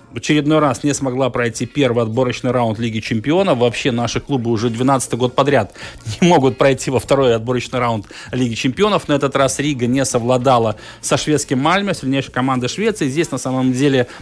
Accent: native